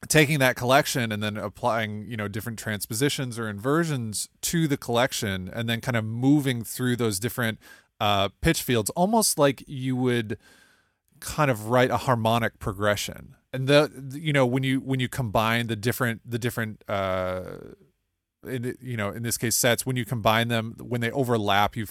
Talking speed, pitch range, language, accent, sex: 185 wpm, 105-130 Hz, English, American, male